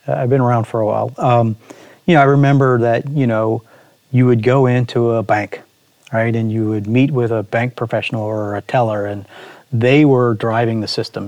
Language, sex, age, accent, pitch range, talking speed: English, male, 40-59, American, 110-130 Hz, 200 wpm